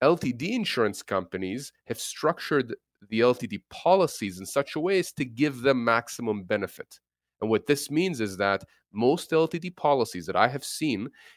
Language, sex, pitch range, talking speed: English, male, 110-140 Hz, 165 wpm